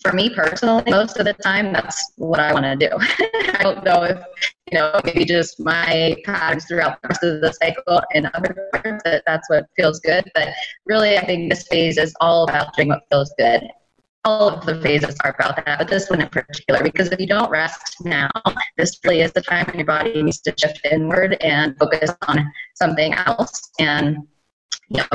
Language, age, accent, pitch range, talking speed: English, 20-39, American, 150-185 Hz, 210 wpm